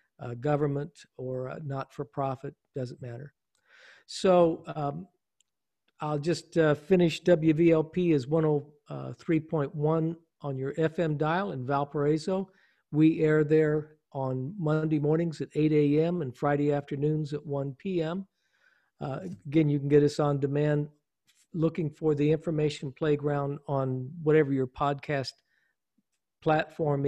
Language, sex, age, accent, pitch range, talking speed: English, male, 50-69, American, 140-165 Hz, 120 wpm